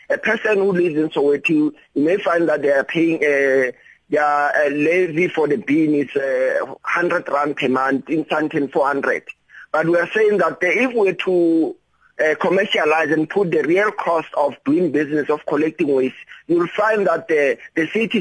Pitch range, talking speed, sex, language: 150-185 Hz, 190 wpm, male, English